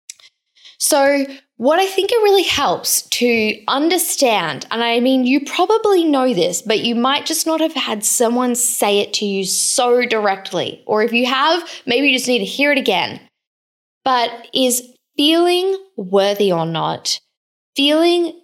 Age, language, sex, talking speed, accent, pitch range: 10-29, English, female, 160 wpm, Australian, 215-285 Hz